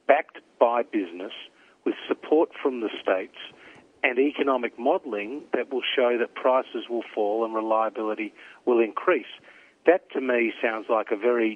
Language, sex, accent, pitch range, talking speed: English, male, Australian, 105-145 Hz, 150 wpm